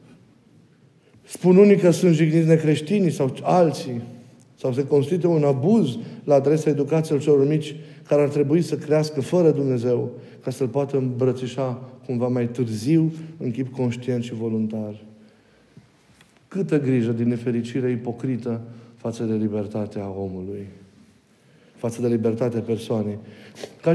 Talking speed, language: 130 wpm, Romanian